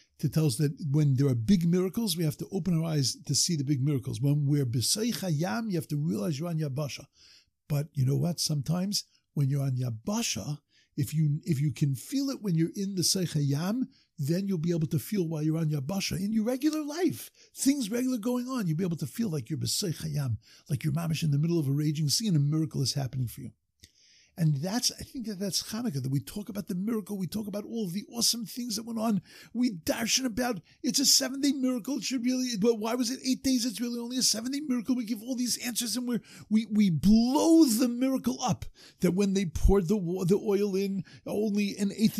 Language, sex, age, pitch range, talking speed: English, male, 50-69, 155-235 Hz, 235 wpm